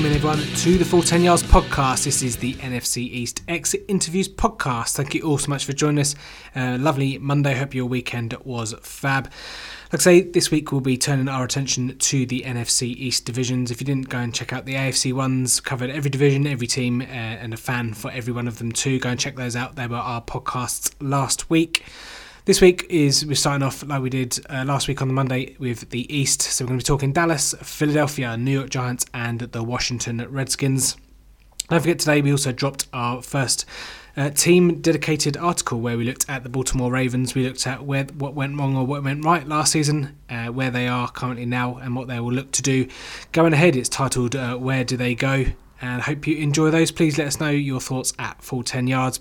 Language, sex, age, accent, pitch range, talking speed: English, male, 20-39, British, 125-145 Hz, 225 wpm